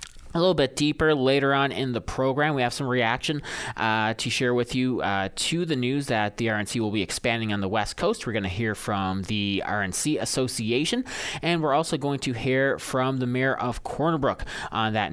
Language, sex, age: English, male, 30-49